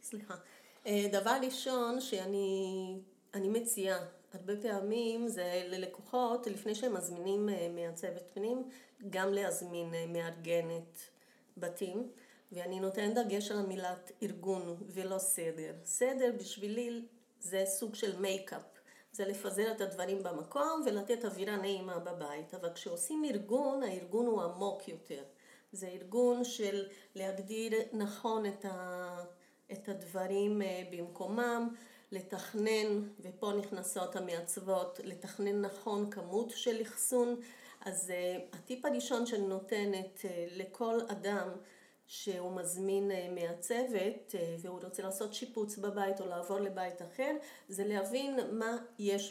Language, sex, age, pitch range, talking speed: Hebrew, female, 30-49, 185-235 Hz, 110 wpm